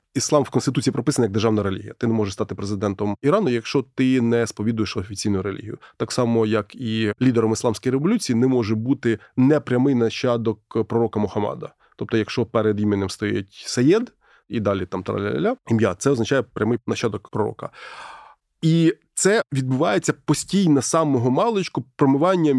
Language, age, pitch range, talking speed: Ukrainian, 20-39, 115-155 Hz, 150 wpm